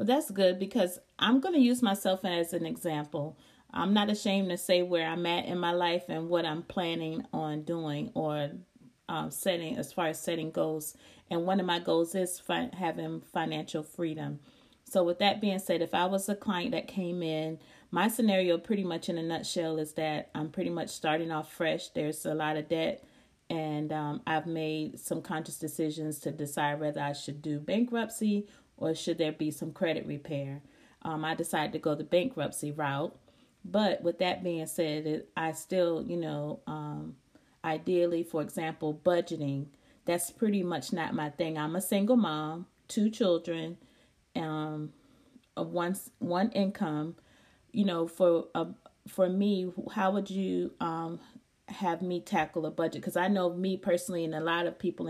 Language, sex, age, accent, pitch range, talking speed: English, female, 30-49, American, 155-190 Hz, 175 wpm